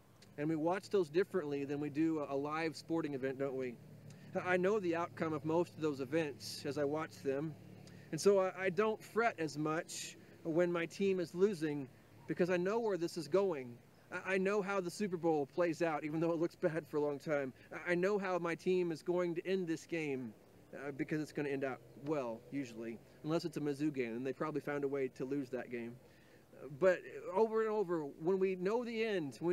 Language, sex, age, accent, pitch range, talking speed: English, male, 30-49, American, 140-185 Hz, 215 wpm